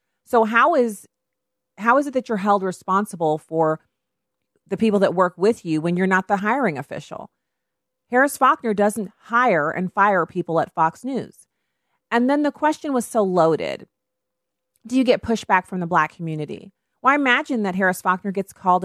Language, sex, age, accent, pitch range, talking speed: English, female, 40-59, American, 165-210 Hz, 180 wpm